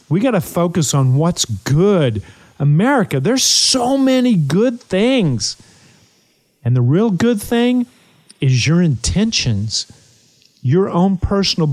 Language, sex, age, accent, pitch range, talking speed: English, male, 50-69, American, 125-165 Hz, 125 wpm